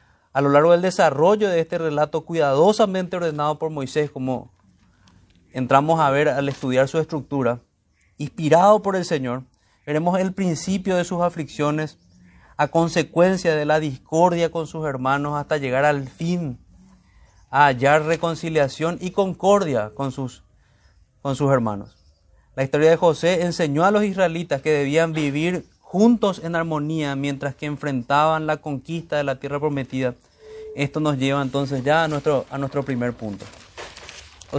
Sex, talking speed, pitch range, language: male, 150 wpm, 130-165 Hz, Spanish